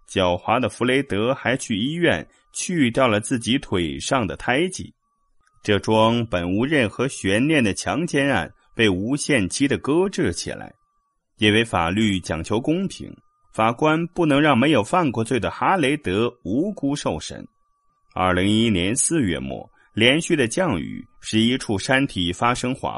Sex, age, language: male, 30-49, Chinese